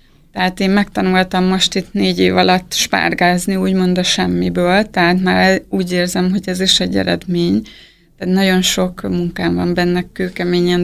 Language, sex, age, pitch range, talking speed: Hungarian, female, 20-39, 130-195 Hz, 150 wpm